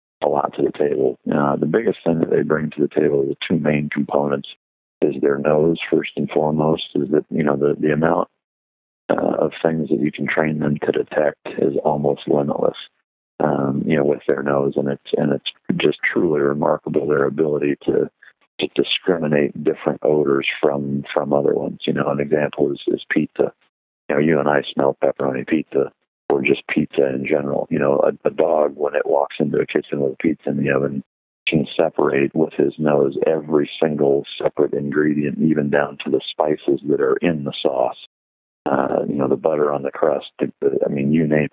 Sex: male